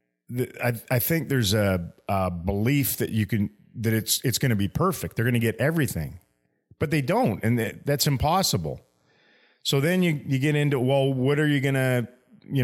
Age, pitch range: 40-59, 110-140 Hz